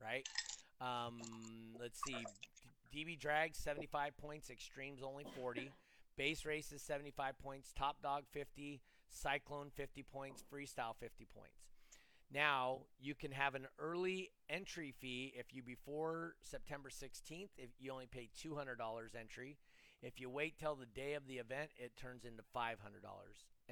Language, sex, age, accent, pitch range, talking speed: English, male, 30-49, American, 125-150 Hz, 145 wpm